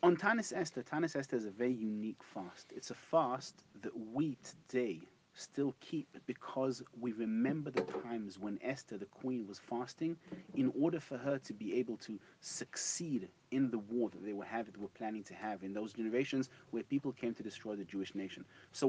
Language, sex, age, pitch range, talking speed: English, male, 30-49, 105-140 Hz, 195 wpm